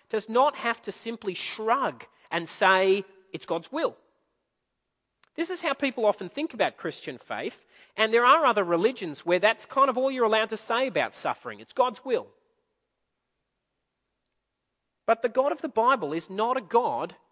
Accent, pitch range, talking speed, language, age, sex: Australian, 190-260 Hz, 170 wpm, English, 40-59, male